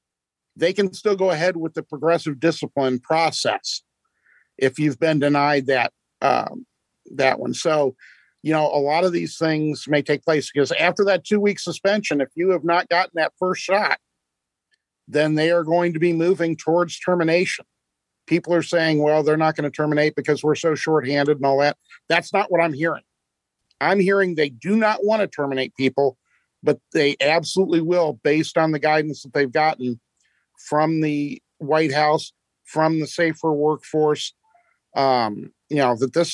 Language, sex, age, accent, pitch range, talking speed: English, male, 50-69, American, 145-170 Hz, 175 wpm